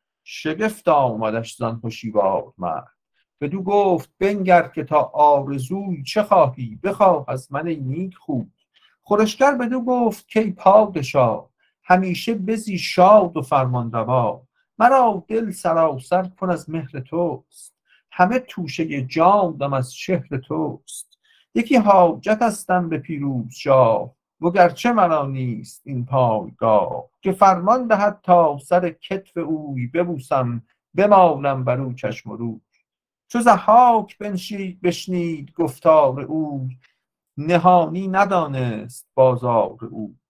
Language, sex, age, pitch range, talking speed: English, male, 50-69, 130-190 Hz, 120 wpm